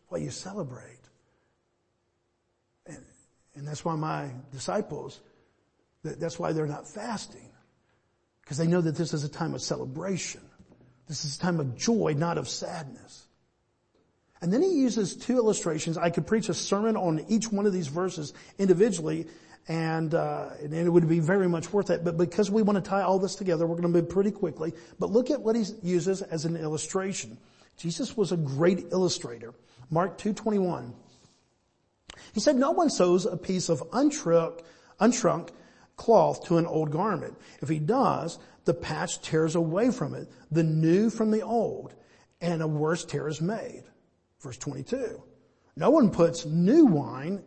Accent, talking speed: American, 175 wpm